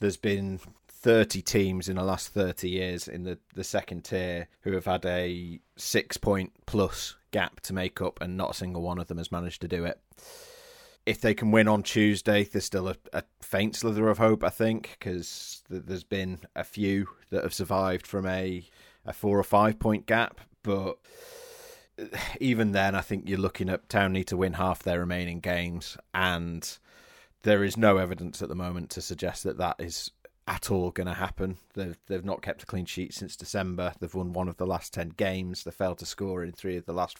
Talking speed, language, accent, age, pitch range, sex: 205 wpm, English, British, 30-49, 90-105 Hz, male